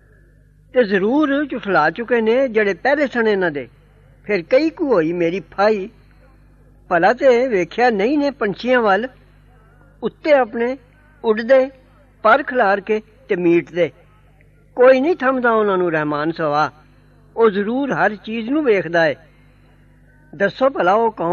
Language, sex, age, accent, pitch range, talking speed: English, female, 60-79, Indian, 175-250 Hz, 130 wpm